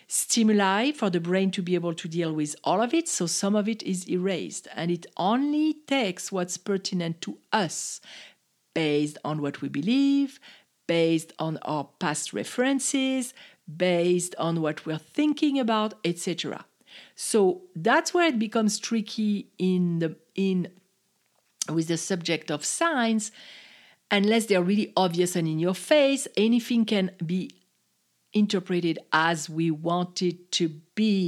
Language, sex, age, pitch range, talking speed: English, female, 50-69, 175-265 Hz, 145 wpm